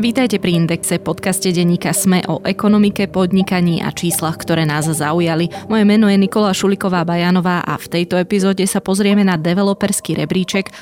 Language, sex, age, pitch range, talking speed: Slovak, female, 20-39, 165-190 Hz, 155 wpm